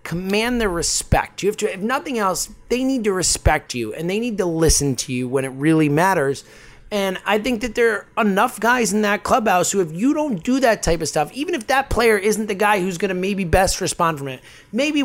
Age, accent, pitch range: 30-49, American, 160-230 Hz